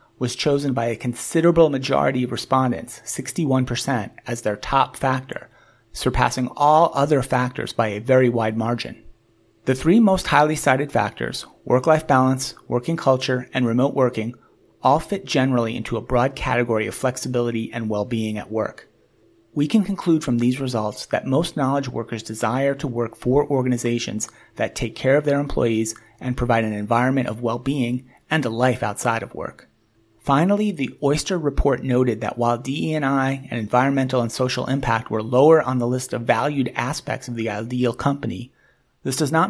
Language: English